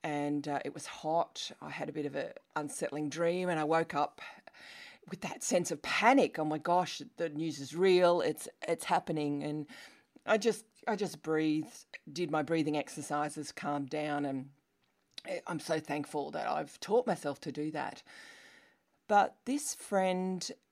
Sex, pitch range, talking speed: female, 150-210 Hz, 170 wpm